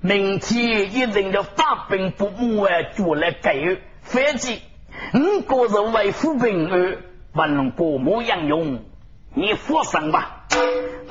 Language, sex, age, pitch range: Chinese, male, 40-59, 205-290 Hz